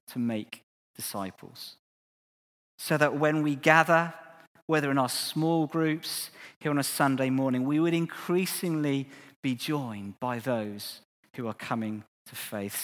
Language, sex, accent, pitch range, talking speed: English, male, British, 105-140 Hz, 140 wpm